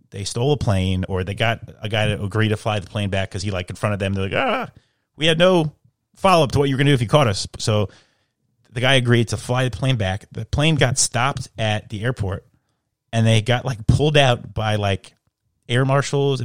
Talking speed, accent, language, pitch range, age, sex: 235 wpm, American, English, 105-130 Hz, 30-49, male